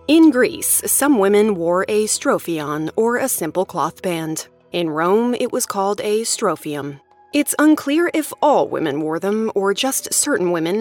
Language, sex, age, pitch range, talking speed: English, female, 20-39, 165-245 Hz, 165 wpm